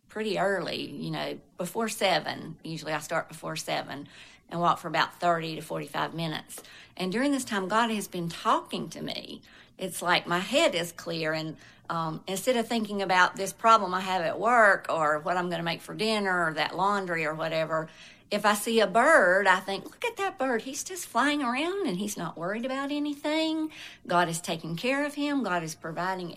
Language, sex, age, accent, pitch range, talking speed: English, female, 50-69, American, 170-235 Hz, 205 wpm